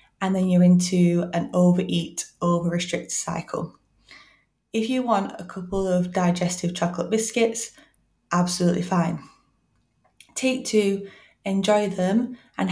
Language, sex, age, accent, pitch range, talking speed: English, female, 20-39, British, 175-220 Hz, 115 wpm